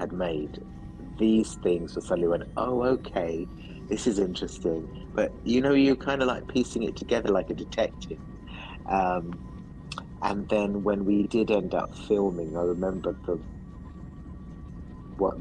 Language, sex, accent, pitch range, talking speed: English, male, British, 80-100 Hz, 150 wpm